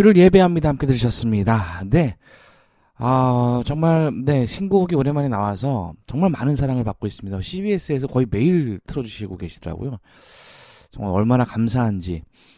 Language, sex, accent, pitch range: Korean, male, native, 90-135 Hz